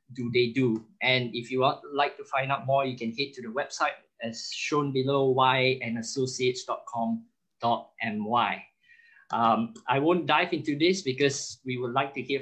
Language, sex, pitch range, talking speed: English, male, 125-175 Hz, 170 wpm